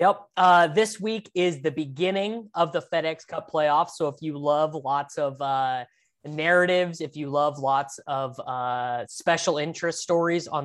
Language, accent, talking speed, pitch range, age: English, American, 170 wpm, 135-170 Hz, 20-39